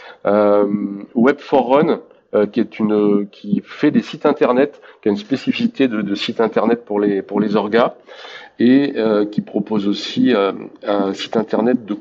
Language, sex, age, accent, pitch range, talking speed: French, male, 40-59, French, 105-130 Hz, 170 wpm